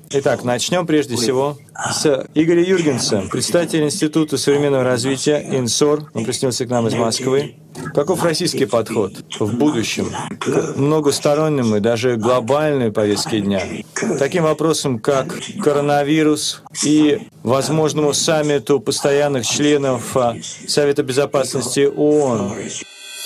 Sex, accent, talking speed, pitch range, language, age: male, native, 110 wpm, 130-160 Hz, Russian, 40-59